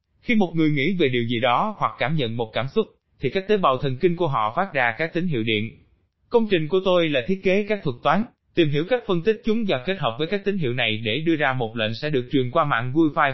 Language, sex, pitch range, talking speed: Vietnamese, male, 125-175 Hz, 285 wpm